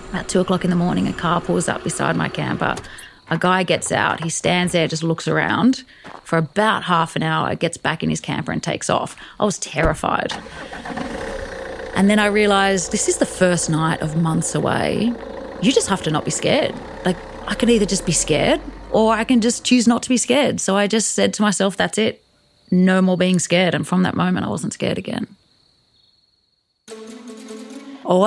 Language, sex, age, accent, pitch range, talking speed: English, female, 30-49, Australian, 165-230 Hz, 200 wpm